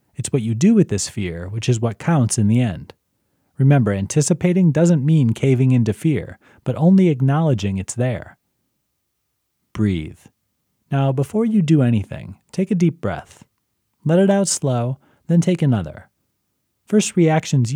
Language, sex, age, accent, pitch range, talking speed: English, male, 30-49, American, 110-160 Hz, 150 wpm